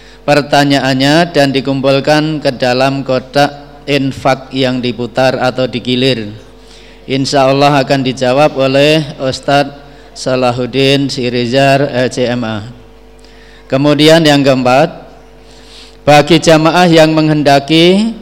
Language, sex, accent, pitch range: Indonesian, male, native, 130-150 Hz